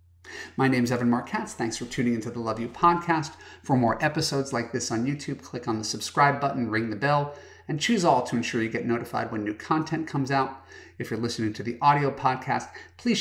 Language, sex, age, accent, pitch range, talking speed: English, male, 30-49, American, 110-140 Hz, 225 wpm